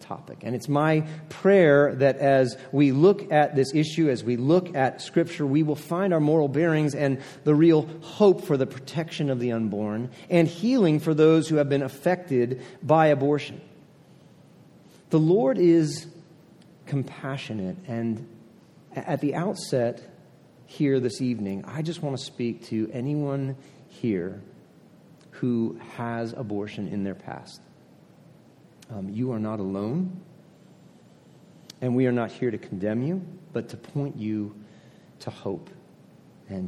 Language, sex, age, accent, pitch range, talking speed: English, male, 40-59, American, 120-160 Hz, 145 wpm